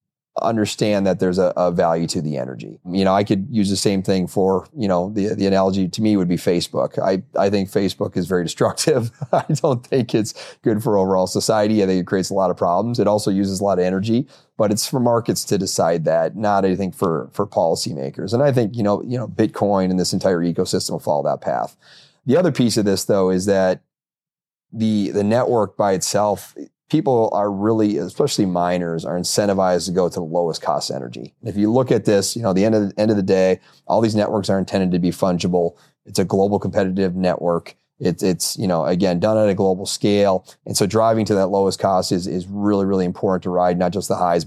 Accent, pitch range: American, 95-110 Hz